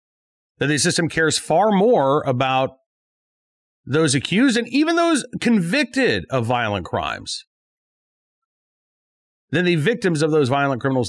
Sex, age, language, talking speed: male, 40-59, English, 125 wpm